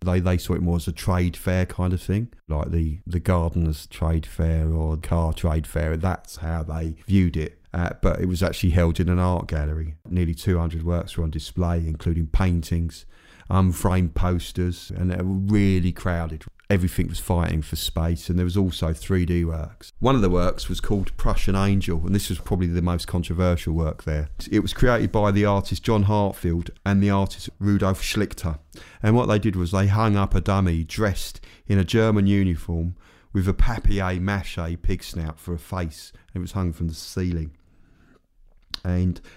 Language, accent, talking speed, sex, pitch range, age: English, British, 190 wpm, male, 85-100 Hz, 30-49